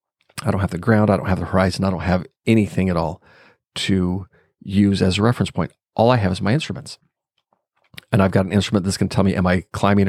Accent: American